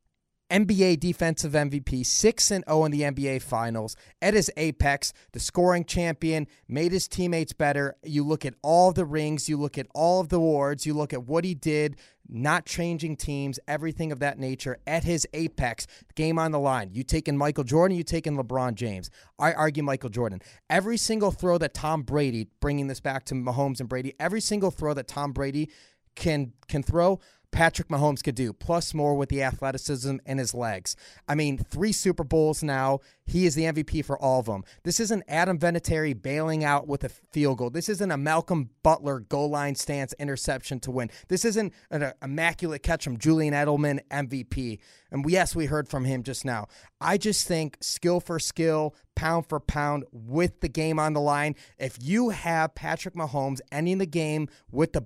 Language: English